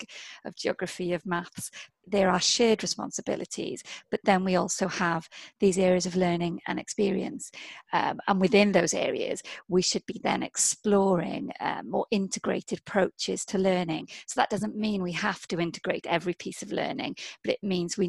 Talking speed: 170 wpm